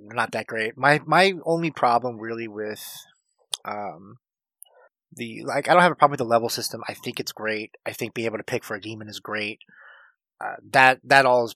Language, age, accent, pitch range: English, 30-49, American, 105-125 Hz